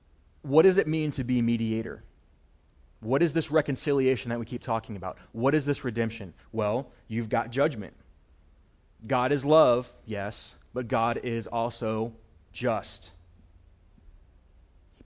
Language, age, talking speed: English, 30-49, 135 wpm